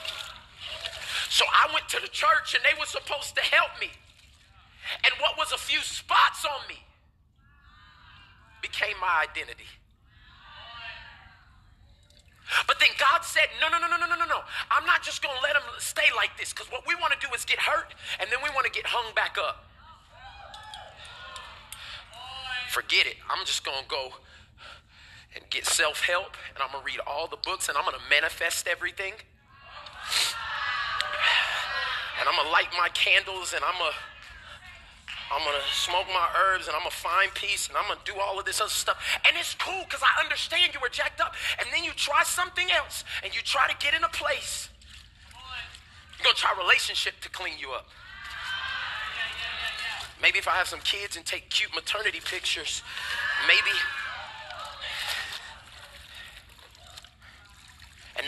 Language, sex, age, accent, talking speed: English, male, 30-49, American, 170 wpm